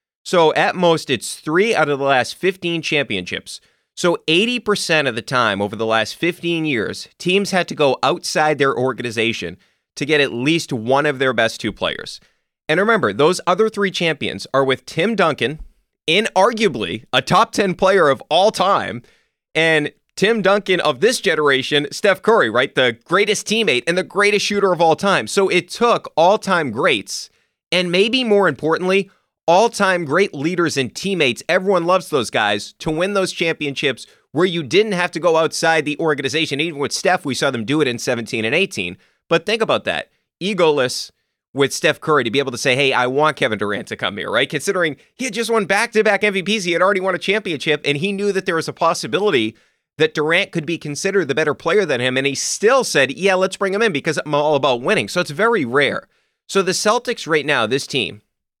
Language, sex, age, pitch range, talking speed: English, male, 30-49, 145-195 Hz, 200 wpm